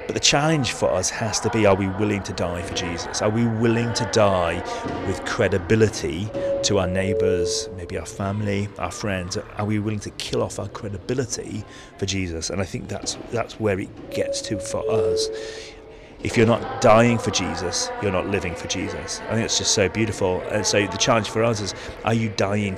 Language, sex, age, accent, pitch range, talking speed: English, male, 30-49, British, 95-115 Hz, 205 wpm